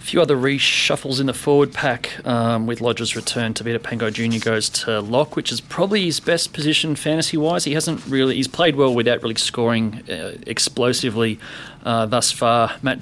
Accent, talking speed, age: Australian, 185 wpm, 30-49